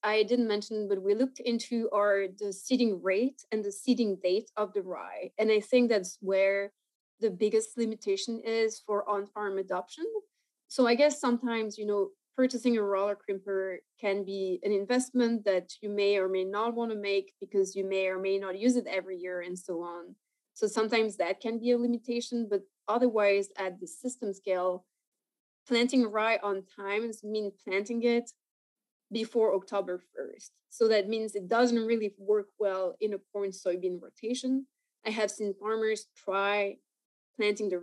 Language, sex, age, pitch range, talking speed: English, female, 20-39, 195-225 Hz, 170 wpm